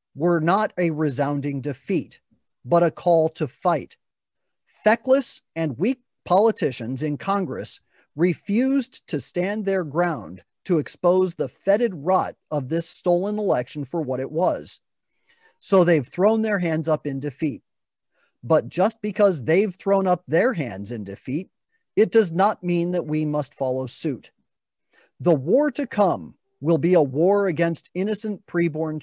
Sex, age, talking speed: male, 40-59, 150 wpm